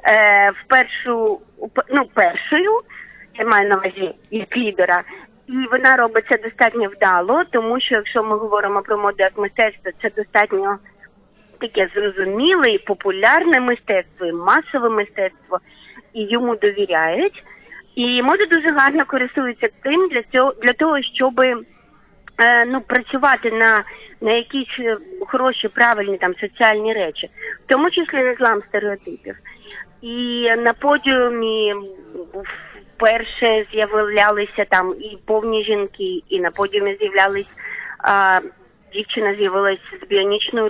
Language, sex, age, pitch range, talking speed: Ukrainian, female, 20-39, 195-250 Hz, 120 wpm